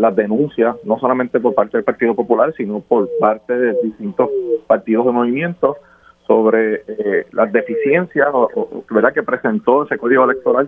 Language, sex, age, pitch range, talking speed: Spanish, male, 30-49, 110-140 Hz, 145 wpm